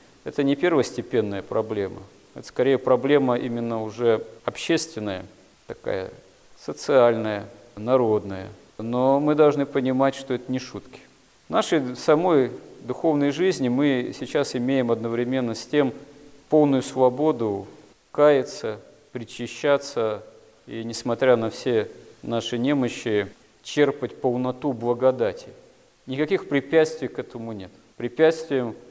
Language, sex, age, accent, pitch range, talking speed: Russian, male, 40-59, native, 110-140 Hz, 105 wpm